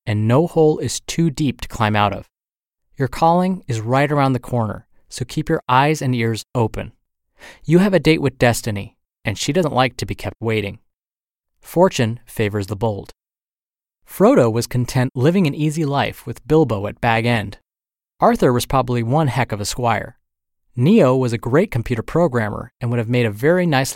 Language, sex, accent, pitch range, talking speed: English, male, American, 110-150 Hz, 190 wpm